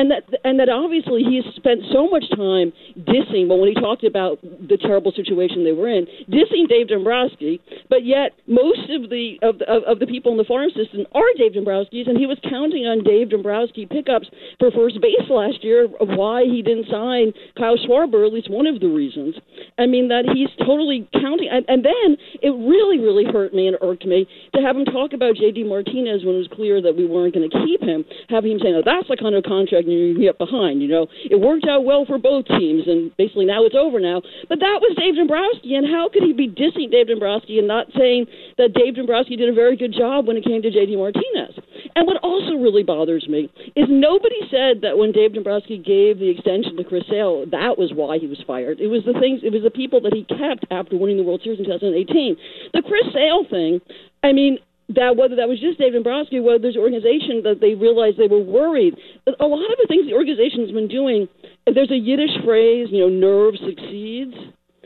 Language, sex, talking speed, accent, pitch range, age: English, female, 230 wpm, American, 210-285 Hz, 50-69